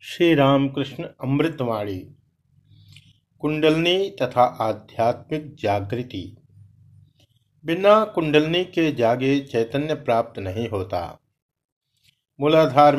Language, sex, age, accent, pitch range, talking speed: Hindi, male, 50-69, native, 115-155 Hz, 75 wpm